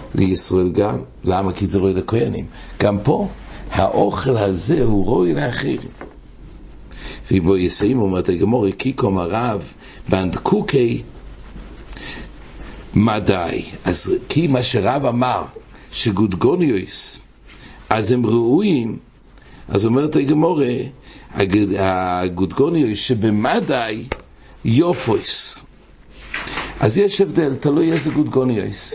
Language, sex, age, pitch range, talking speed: English, male, 60-79, 95-130 Hz, 95 wpm